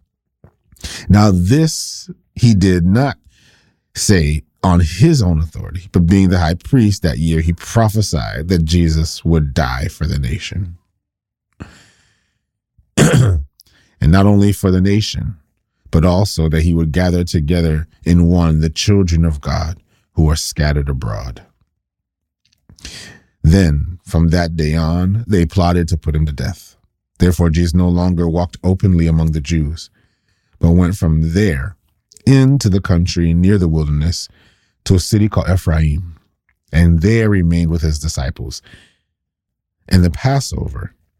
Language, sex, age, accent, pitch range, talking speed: English, male, 30-49, American, 80-100 Hz, 135 wpm